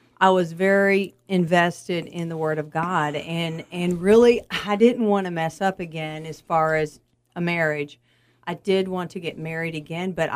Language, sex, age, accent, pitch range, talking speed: English, female, 40-59, American, 155-190 Hz, 185 wpm